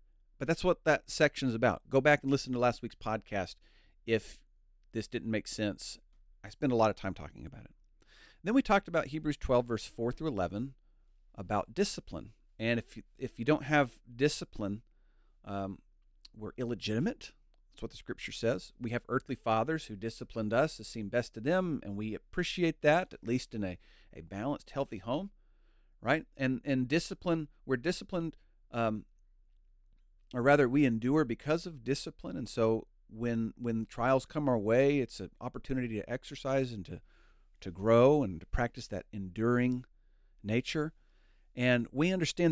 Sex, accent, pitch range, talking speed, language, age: male, American, 110-140 Hz, 170 wpm, English, 40-59